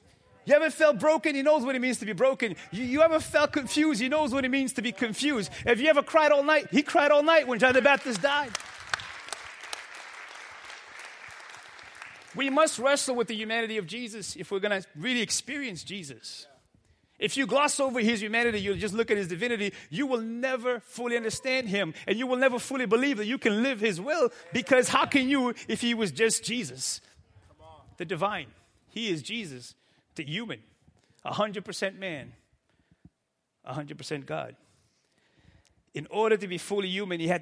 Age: 30-49